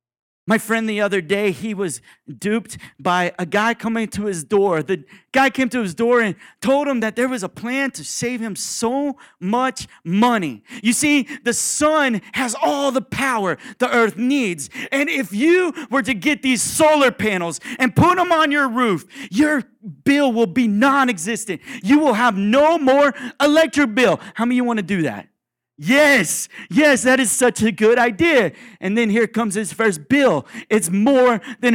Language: English